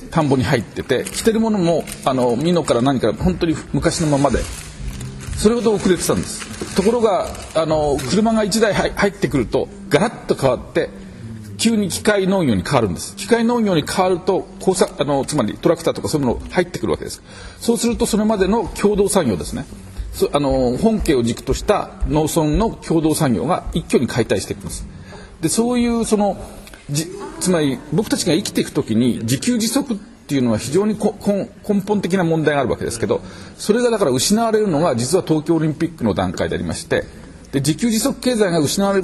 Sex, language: male, Japanese